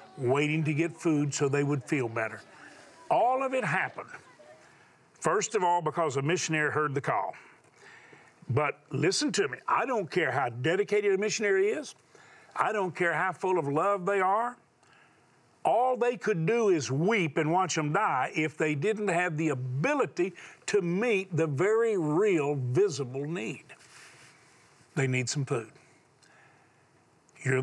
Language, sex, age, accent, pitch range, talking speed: English, male, 50-69, American, 135-185 Hz, 155 wpm